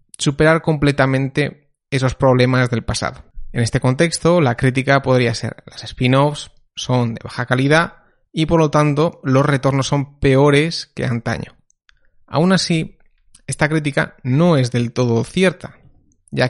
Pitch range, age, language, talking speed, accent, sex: 120-145 Hz, 30-49, Spanish, 140 wpm, Spanish, male